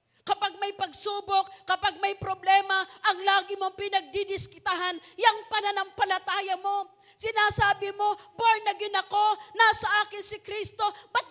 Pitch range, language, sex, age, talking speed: 265-395 Hz, Filipino, female, 40-59, 120 wpm